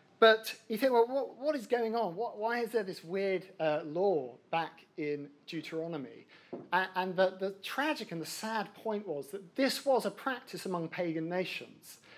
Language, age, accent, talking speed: English, 50-69, British, 185 wpm